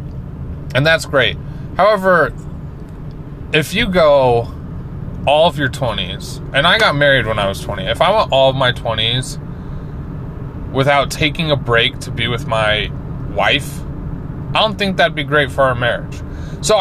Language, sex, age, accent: English, male, 20-39, American